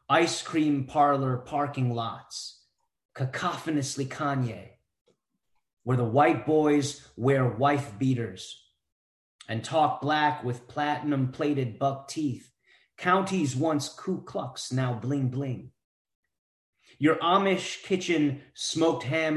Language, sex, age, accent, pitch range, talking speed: English, male, 30-49, American, 130-175 Hz, 100 wpm